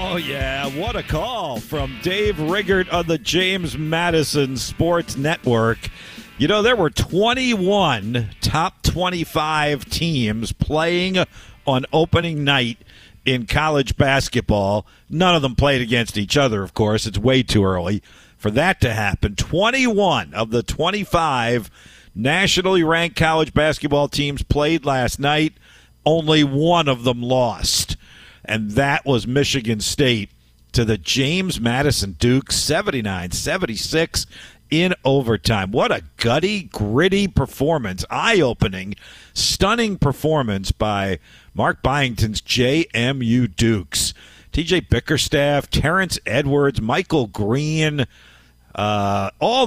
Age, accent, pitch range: 50-69, American, 110-160 Hz